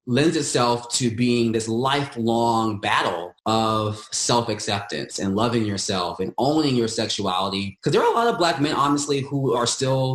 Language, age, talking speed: English, 20-39, 165 wpm